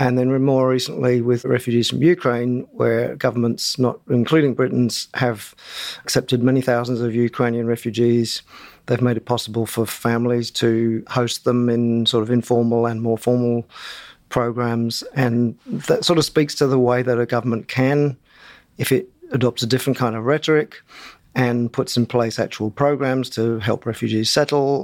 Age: 40-59